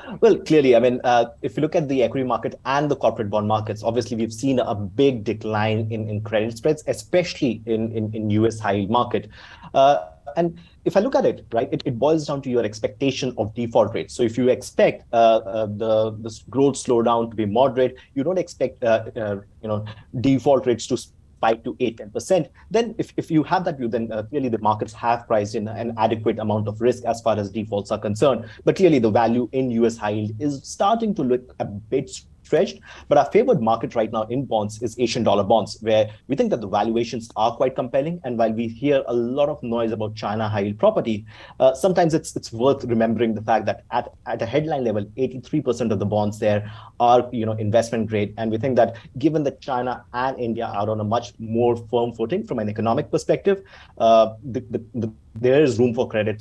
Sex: male